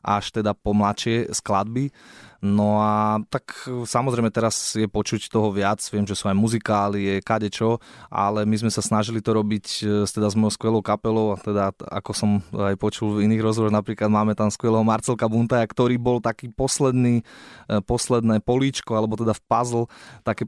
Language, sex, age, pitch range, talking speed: Slovak, male, 20-39, 105-115 Hz, 175 wpm